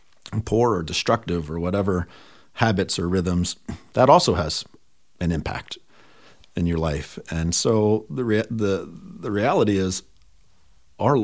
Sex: male